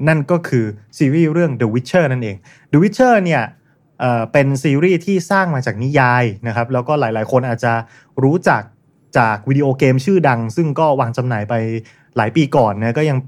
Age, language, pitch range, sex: 20-39, Thai, 120-160 Hz, male